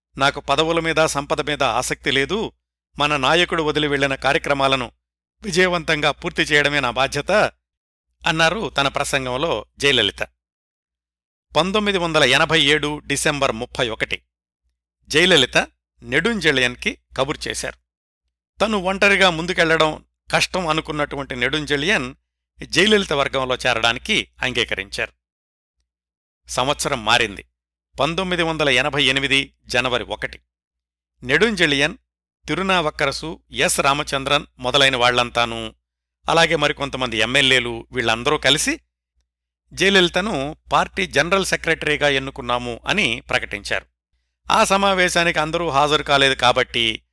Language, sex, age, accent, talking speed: Telugu, male, 50-69, native, 90 wpm